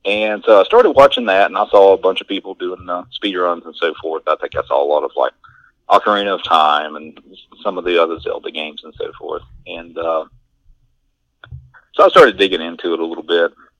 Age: 40-59